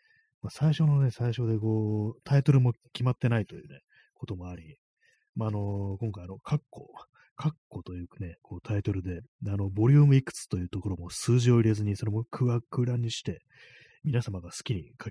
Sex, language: male, Japanese